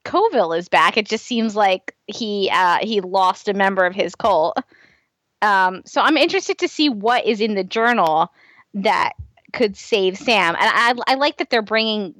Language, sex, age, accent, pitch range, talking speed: English, female, 20-39, American, 200-255 Hz, 185 wpm